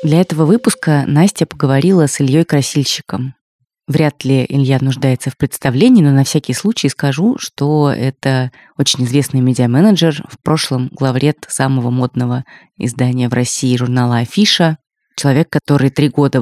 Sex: female